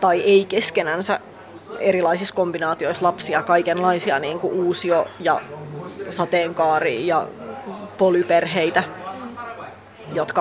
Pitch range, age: 175-195 Hz, 30-49